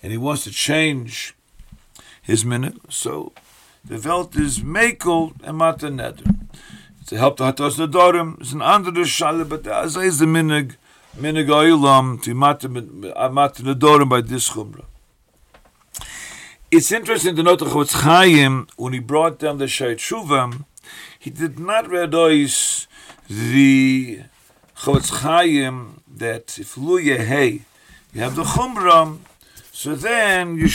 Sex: male